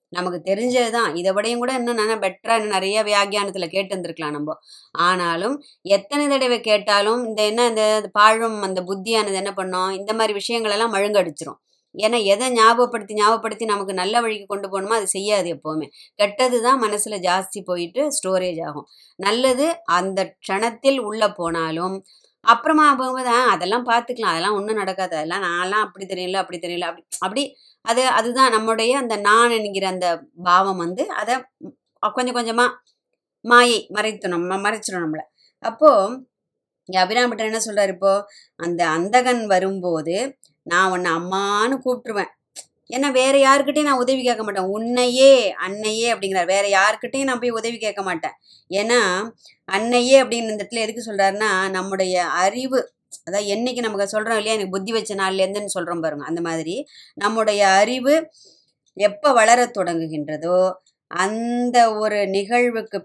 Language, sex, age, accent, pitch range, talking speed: Tamil, male, 20-39, native, 190-240 Hz, 135 wpm